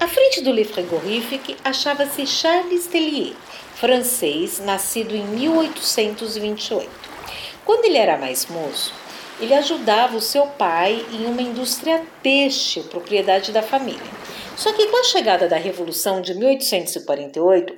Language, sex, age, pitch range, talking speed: Portuguese, female, 50-69, 230-325 Hz, 130 wpm